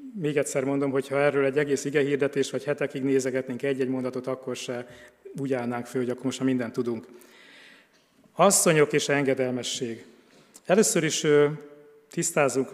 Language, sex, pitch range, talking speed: Hungarian, male, 135-150 Hz, 145 wpm